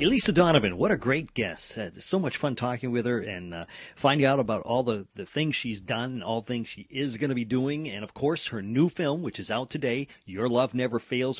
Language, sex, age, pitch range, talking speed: English, male, 40-59, 110-155 Hz, 235 wpm